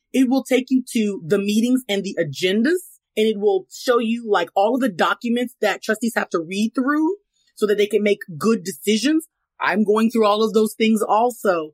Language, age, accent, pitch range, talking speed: English, 30-49, American, 190-240 Hz, 210 wpm